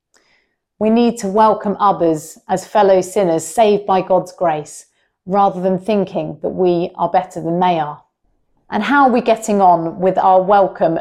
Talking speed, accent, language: 170 wpm, British, English